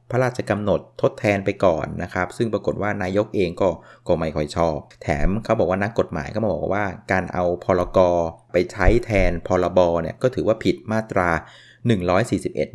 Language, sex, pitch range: Thai, male, 85-110 Hz